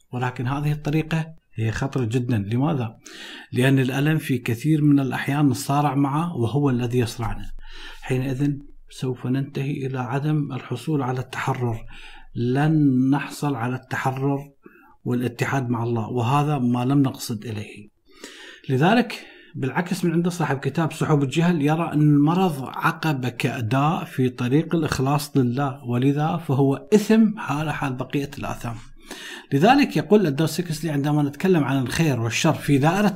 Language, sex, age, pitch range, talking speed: Arabic, male, 50-69, 125-150 Hz, 130 wpm